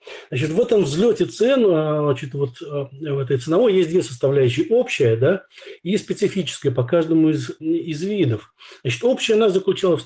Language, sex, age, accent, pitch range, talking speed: Russian, male, 40-59, native, 135-175 Hz, 160 wpm